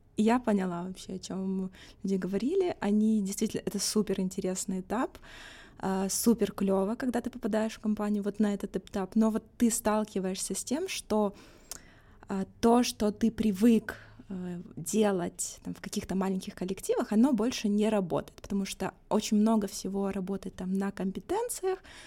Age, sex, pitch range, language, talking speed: 20-39, female, 190-220 Hz, Russian, 145 wpm